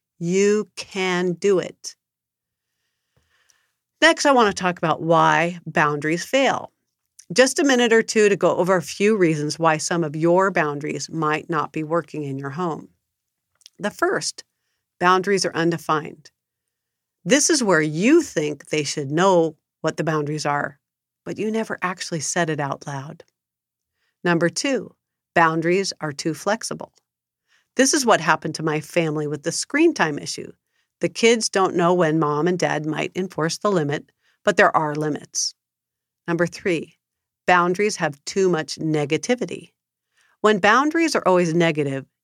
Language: English